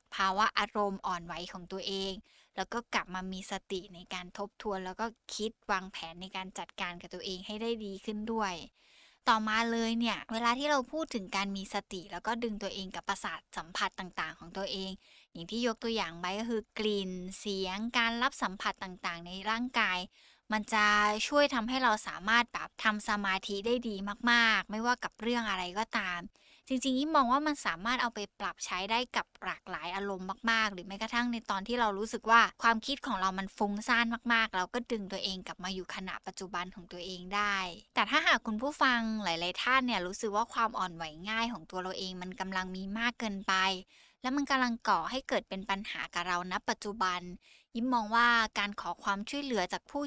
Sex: female